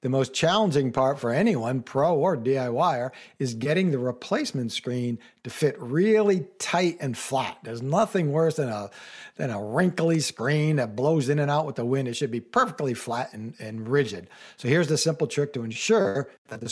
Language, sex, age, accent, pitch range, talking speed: English, male, 60-79, American, 120-155 Hz, 190 wpm